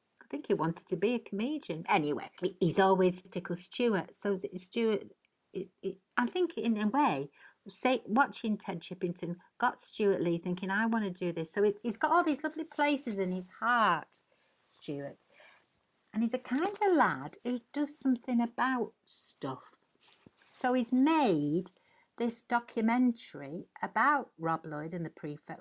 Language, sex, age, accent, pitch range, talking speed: English, female, 60-79, British, 170-230 Hz, 155 wpm